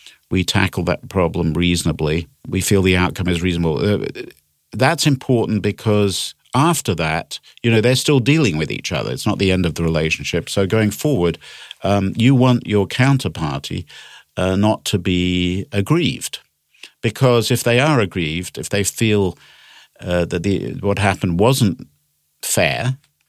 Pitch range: 90-120 Hz